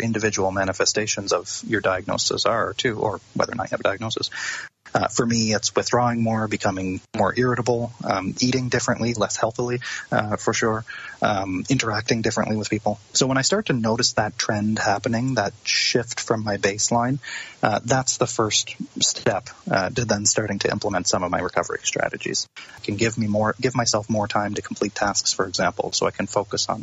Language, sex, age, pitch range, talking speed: English, male, 30-49, 105-125 Hz, 190 wpm